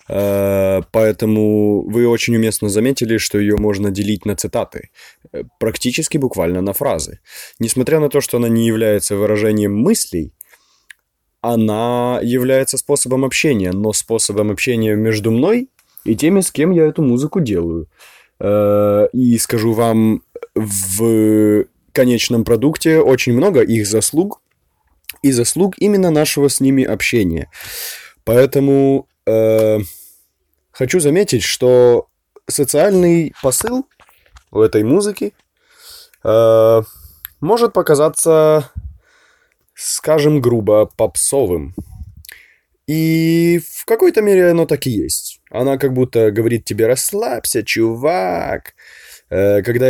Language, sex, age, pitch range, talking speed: Ukrainian, male, 20-39, 105-145 Hz, 110 wpm